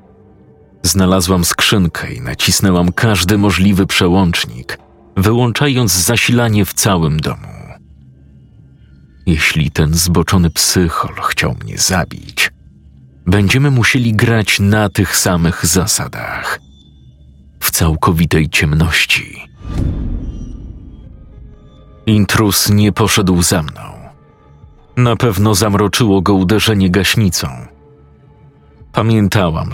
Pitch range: 80-105 Hz